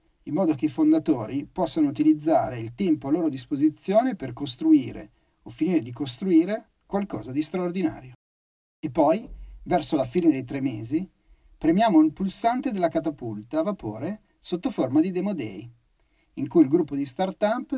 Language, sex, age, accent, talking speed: Italian, male, 40-59, native, 160 wpm